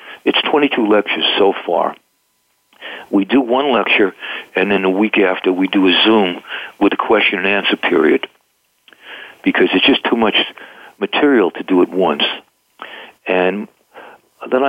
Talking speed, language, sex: 145 wpm, English, male